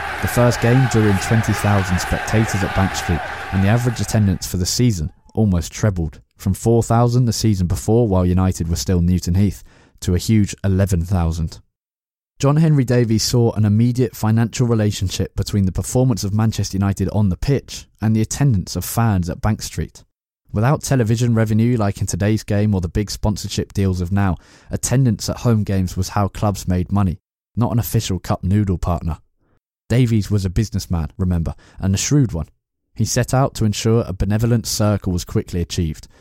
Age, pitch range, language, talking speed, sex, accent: 20-39, 90-115 Hz, English, 180 wpm, male, British